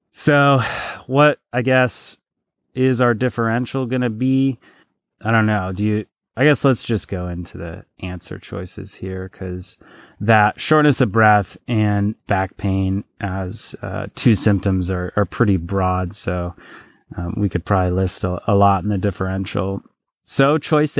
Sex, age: male, 30-49